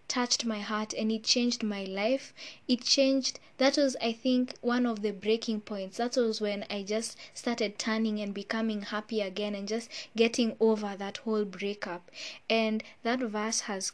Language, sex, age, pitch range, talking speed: English, female, 20-39, 210-240 Hz, 175 wpm